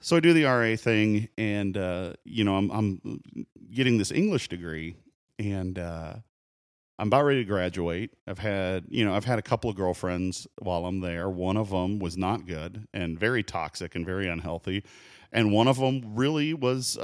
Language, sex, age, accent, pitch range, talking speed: English, male, 40-59, American, 90-110 Hz, 190 wpm